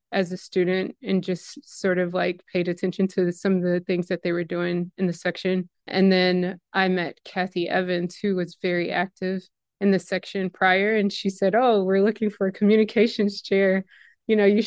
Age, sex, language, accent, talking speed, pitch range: 20-39, female, English, American, 200 wpm, 185-215 Hz